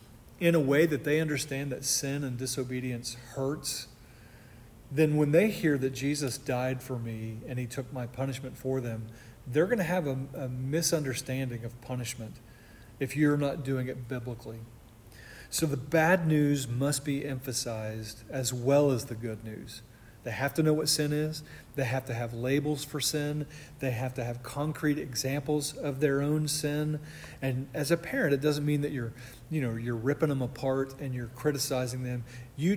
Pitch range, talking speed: 120-145 Hz, 180 wpm